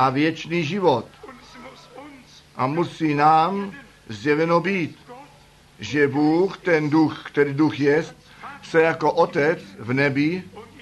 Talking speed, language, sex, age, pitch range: 110 wpm, Czech, male, 50-69, 140-185 Hz